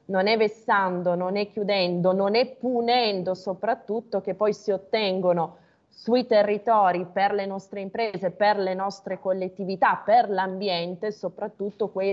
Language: Italian